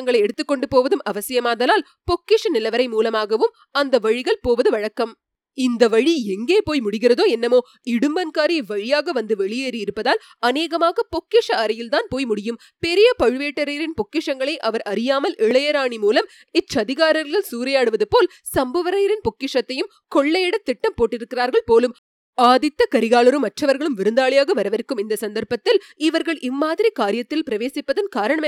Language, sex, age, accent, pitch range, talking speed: Tamil, female, 20-39, native, 235-375 Hz, 80 wpm